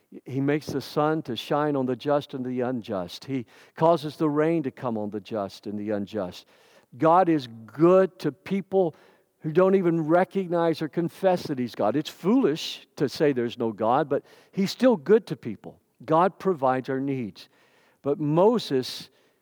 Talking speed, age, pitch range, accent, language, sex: 175 wpm, 50-69, 135-195 Hz, American, English, male